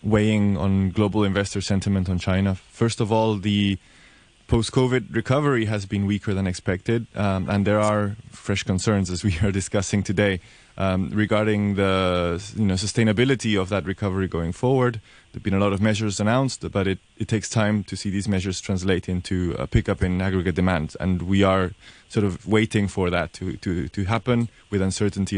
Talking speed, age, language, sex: 185 wpm, 20-39, English, male